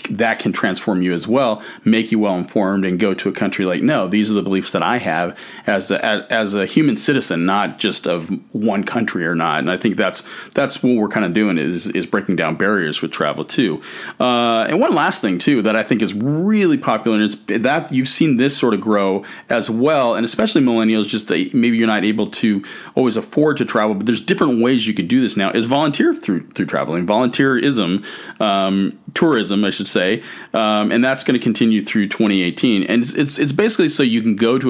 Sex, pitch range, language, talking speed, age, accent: male, 100-120 Hz, English, 220 wpm, 40-59, American